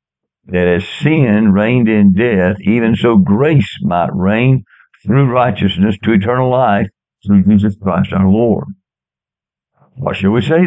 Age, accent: 60-79, American